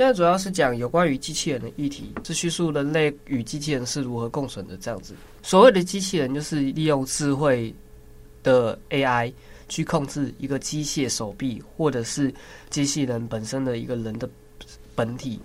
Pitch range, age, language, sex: 115-155 Hz, 20-39, Chinese, male